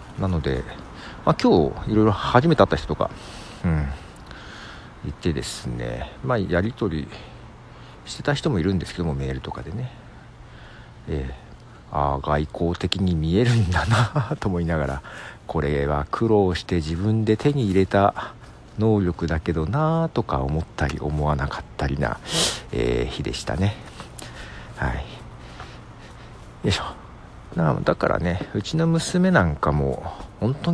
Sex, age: male, 60-79